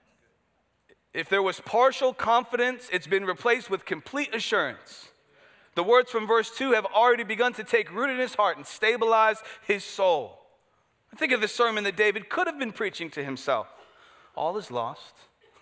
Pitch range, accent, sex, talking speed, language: 135-200 Hz, American, male, 170 wpm, English